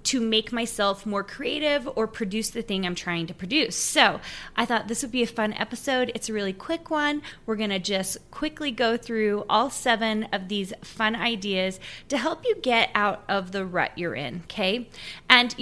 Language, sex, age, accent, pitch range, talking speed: English, female, 20-39, American, 195-240 Hz, 200 wpm